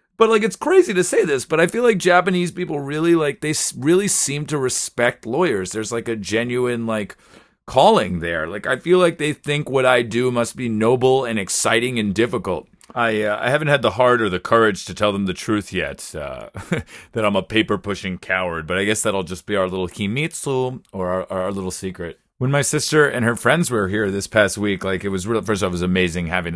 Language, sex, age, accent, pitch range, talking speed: English, male, 30-49, American, 95-130 Hz, 230 wpm